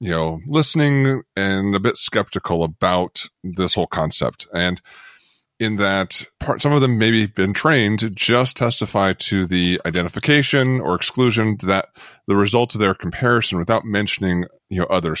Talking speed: 160 wpm